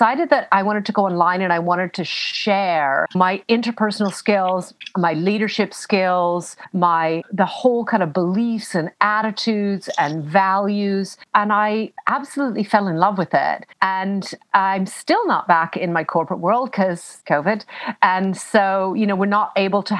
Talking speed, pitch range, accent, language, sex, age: 165 wpm, 175-215 Hz, American, English, female, 40-59